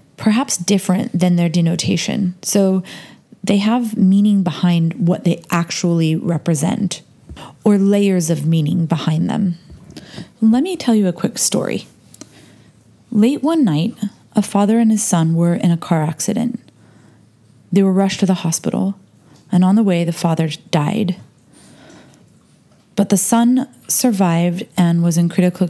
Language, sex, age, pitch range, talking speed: English, female, 20-39, 170-210 Hz, 140 wpm